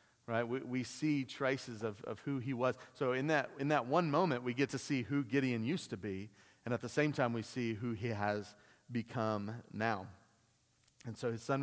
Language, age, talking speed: English, 30-49, 215 wpm